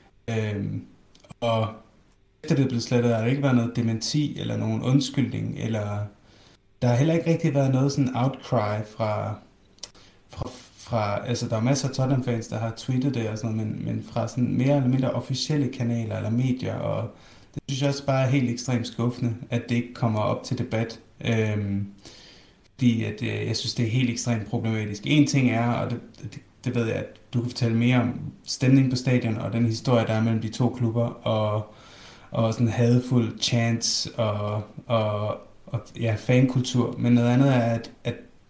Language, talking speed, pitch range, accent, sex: Danish, 190 wpm, 110-125 Hz, native, male